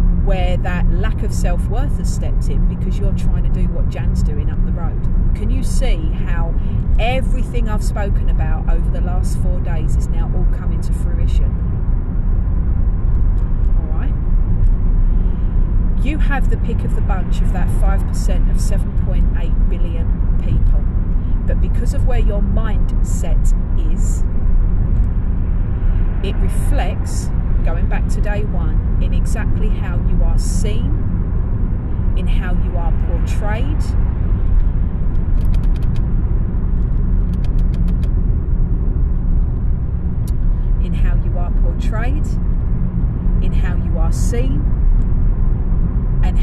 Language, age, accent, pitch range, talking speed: English, 40-59, British, 80-95 Hz, 115 wpm